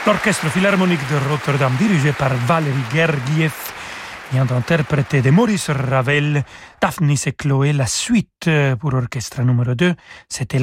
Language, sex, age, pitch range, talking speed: French, male, 40-59, 140-180 Hz, 130 wpm